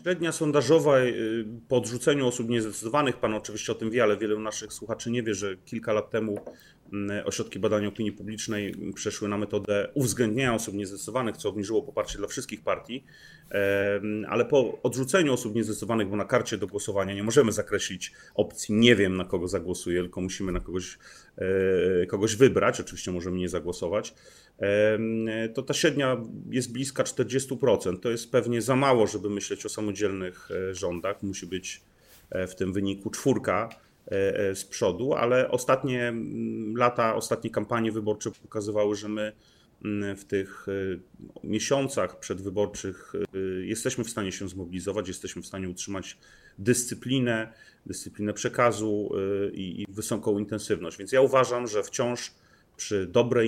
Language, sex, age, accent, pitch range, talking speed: Polish, male, 30-49, native, 100-120 Hz, 140 wpm